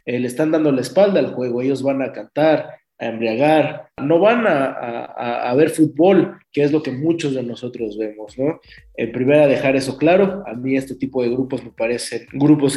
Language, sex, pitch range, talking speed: Spanish, male, 125-155 Hz, 200 wpm